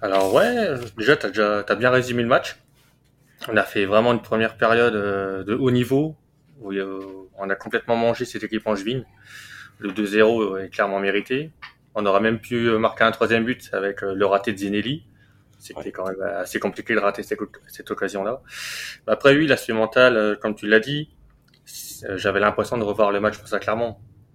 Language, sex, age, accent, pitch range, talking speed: French, male, 20-39, French, 100-120 Hz, 185 wpm